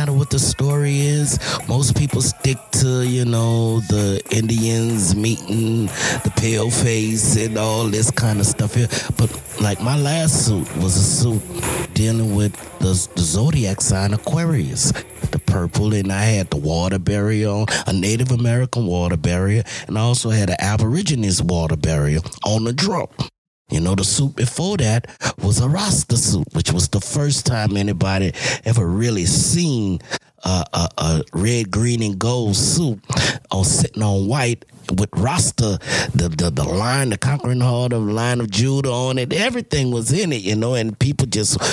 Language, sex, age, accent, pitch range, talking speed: English, male, 30-49, American, 100-130 Hz, 170 wpm